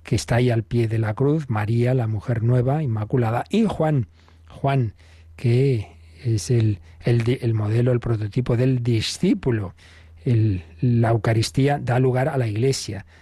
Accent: Spanish